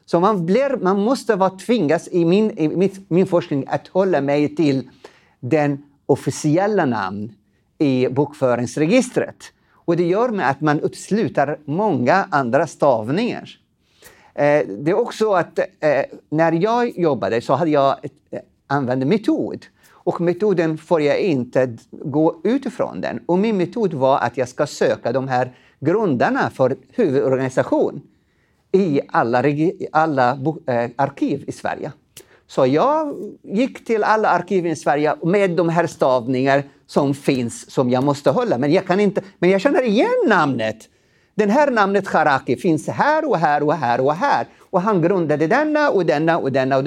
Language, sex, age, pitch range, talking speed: Swedish, male, 50-69, 140-200 Hz, 160 wpm